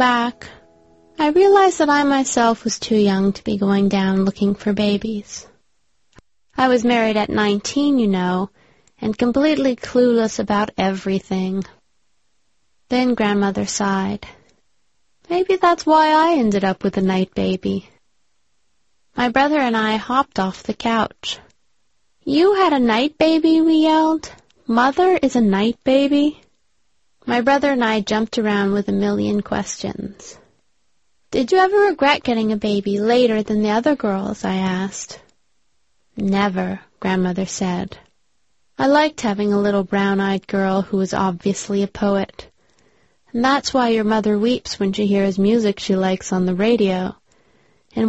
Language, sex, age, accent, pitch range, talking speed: English, female, 30-49, American, 195-250 Hz, 145 wpm